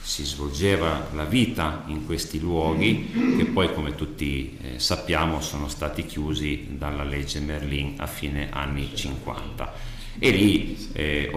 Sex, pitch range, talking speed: male, 75-95 Hz, 130 wpm